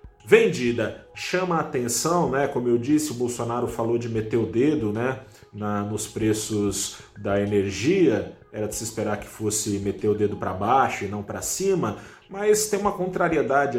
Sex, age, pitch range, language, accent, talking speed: male, 30-49, 105-145 Hz, Portuguese, Brazilian, 175 wpm